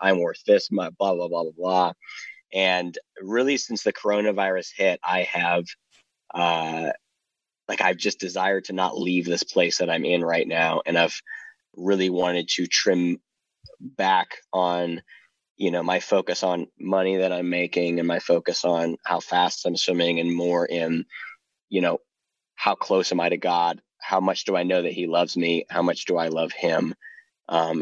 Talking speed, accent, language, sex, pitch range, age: 180 wpm, American, English, male, 85-95 Hz, 30-49